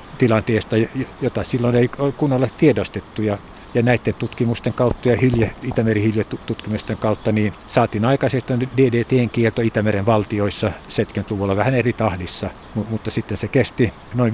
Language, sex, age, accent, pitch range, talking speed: Finnish, male, 60-79, native, 105-120 Hz, 130 wpm